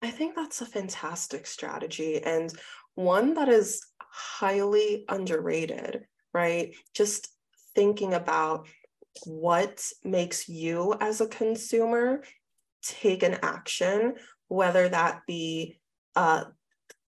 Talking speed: 100 wpm